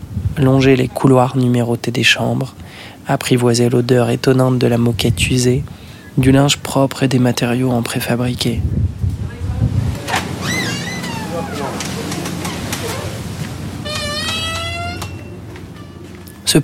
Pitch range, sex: 120-145 Hz, male